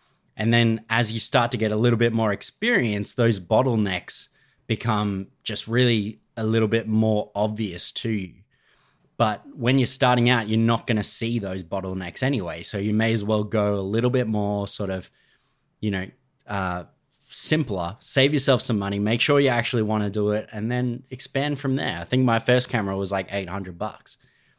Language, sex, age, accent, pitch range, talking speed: English, male, 20-39, Australian, 100-130 Hz, 195 wpm